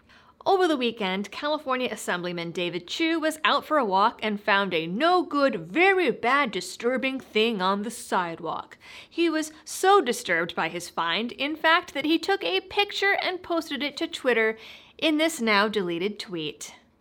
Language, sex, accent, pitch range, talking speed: English, female, American, 205-330 Hz, 160 wpm